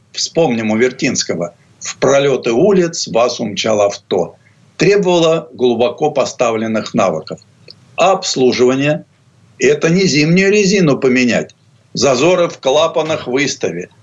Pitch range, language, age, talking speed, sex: 125-170 Hz, Russian, 60-79, 105 wpm, male